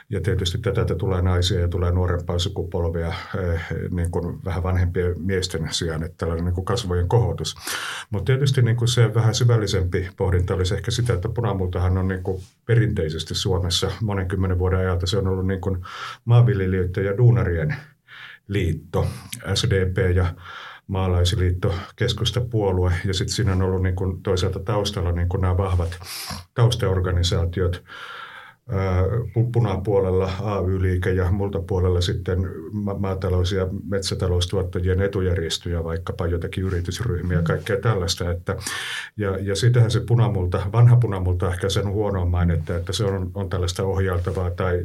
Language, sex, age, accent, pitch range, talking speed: Finnish, male, 50-69, native, 90-105 Hz, 130 wpm